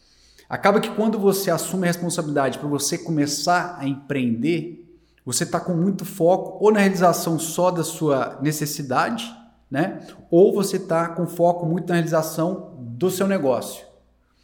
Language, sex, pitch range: Portuguese, male, 140-190 Hz